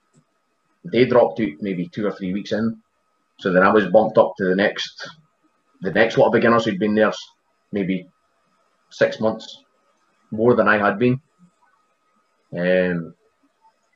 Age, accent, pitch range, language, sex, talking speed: 30-49, British, 90-110 Hz, English, male, 150 wpm